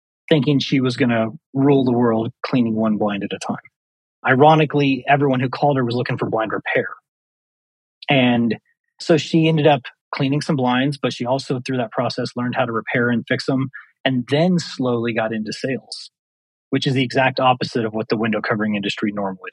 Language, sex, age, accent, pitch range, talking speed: English, male, 30-49, American, 115-140 Hz, 195 wpm